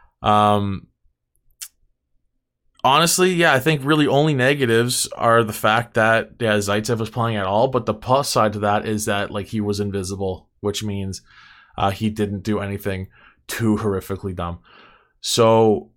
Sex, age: male, 20-39